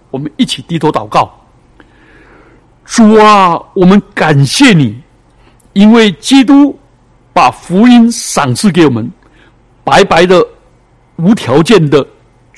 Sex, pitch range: male, 145-210 Hz